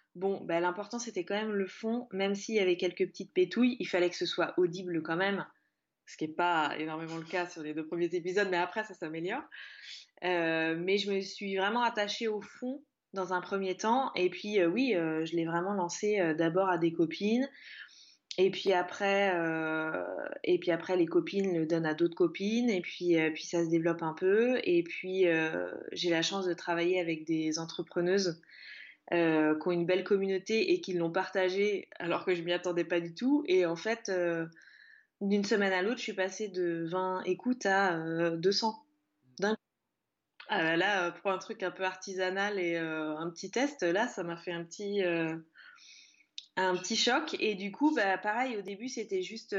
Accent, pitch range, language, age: French, 170-210 Hz, French, 20-39